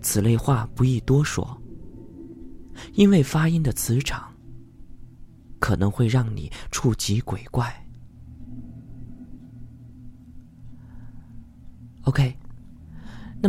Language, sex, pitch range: Chinese, male, 110-135 Hz